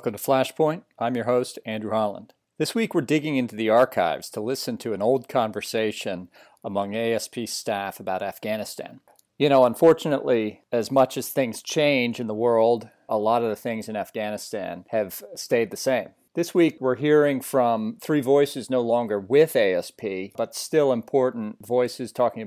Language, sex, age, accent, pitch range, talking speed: English, male, 40-59, American, 105-130 Hz, 170 wpm